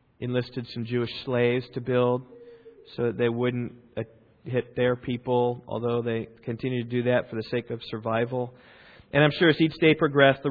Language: English